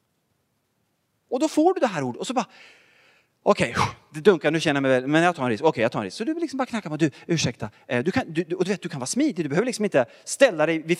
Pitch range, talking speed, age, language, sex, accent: 170-275 Hz, 305 wpm, 30-49, Swedish, male, Norwegian